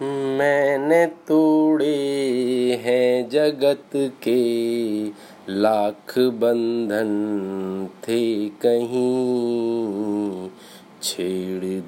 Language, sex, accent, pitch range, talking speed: Hindi, male, native, 105-125 Hz, 50 wpm